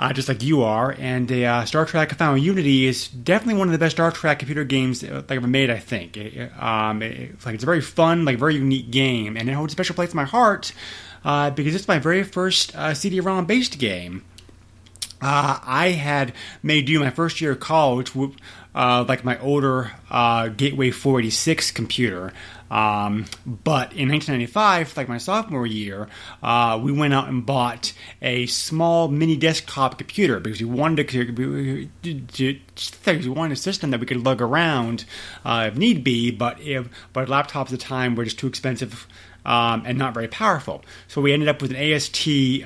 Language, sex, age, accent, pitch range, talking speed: English, male, 30-49, American, 115-145 Hz, 200 wpm